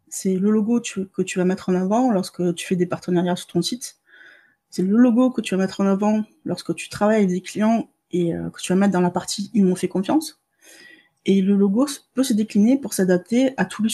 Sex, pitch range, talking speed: female, 180-230 Hz, 260 wpm